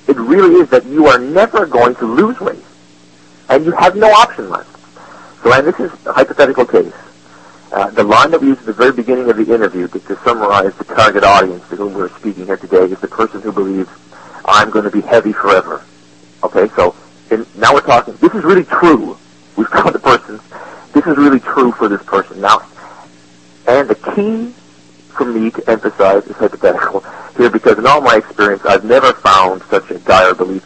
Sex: male